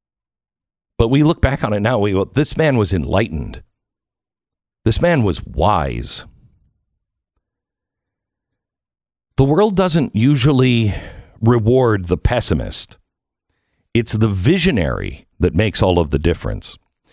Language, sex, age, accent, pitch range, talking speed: English, male, 50-69, American, 95-125 Hz, 110 wpm